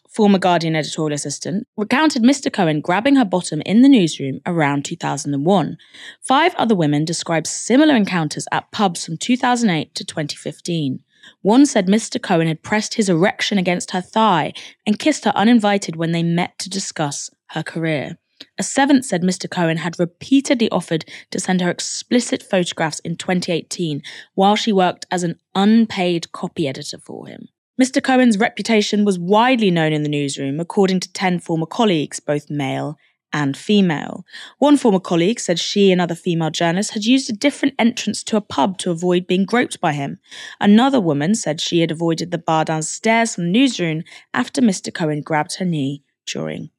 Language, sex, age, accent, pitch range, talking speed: English, female, 20-39, British, 165-225 Hz, 170 wpm